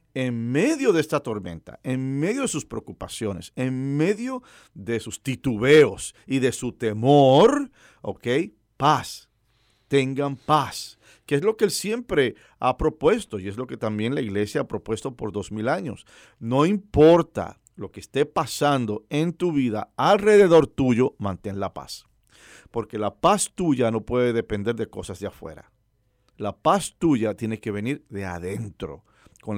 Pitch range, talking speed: 110-150 Hz, 160 wpm